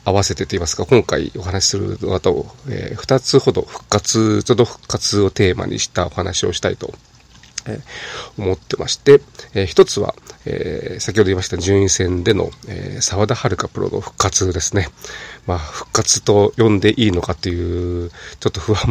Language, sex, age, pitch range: Japanese, male, 40-59, 95-125 Hz